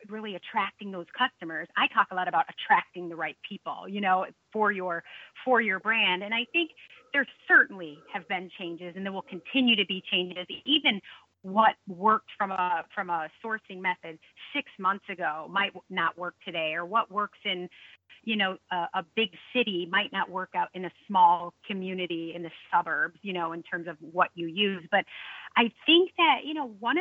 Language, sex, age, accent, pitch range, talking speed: English, female, 30-49, American, 180-225 Hz, 195 wpm